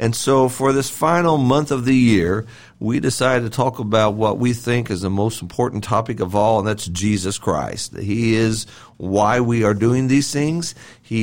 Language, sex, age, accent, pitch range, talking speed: English, male, 50-69, American, 110-135 Hz, 200 wpm